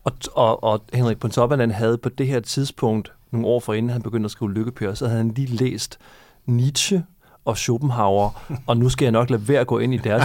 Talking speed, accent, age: 230 wpm, native, 30-49